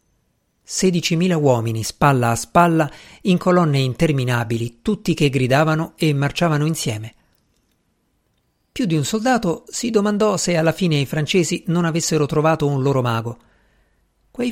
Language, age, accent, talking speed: Italian, 50-69, native, 130 wpm